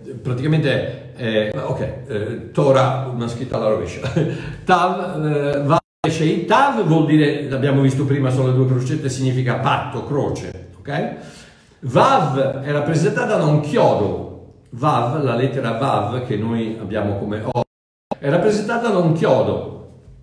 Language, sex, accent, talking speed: Italian, male, native, 135 wpm